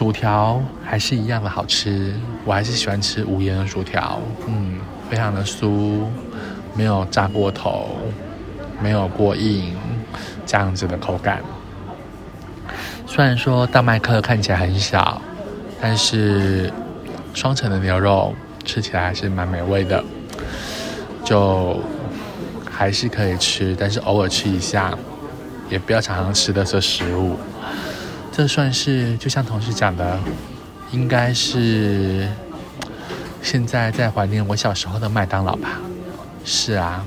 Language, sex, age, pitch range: Chinese, male, 20-39, 95-110 Hz